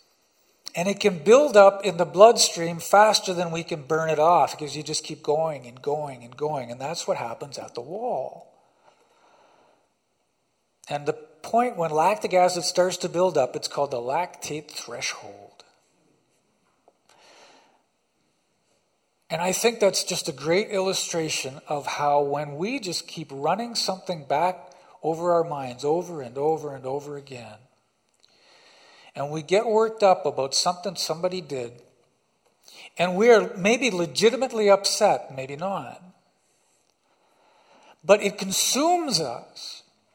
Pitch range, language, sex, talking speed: 155-205 Hz, English, male, 140 wpm